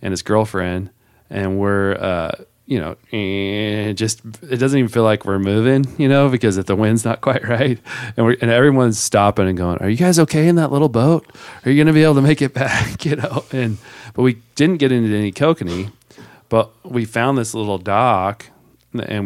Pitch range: 95-120 Hz